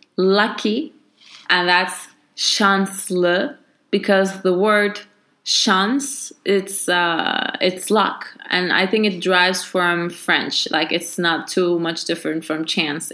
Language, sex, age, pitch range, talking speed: English, female, 20-39, 180-220 Hz, 125 wpm